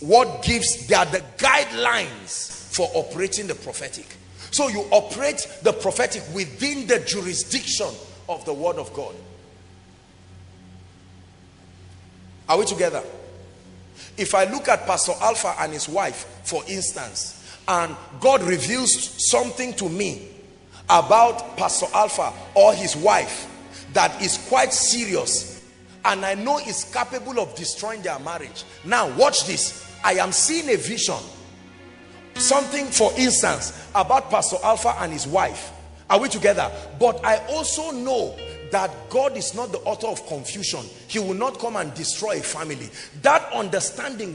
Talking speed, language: 140 wpm, English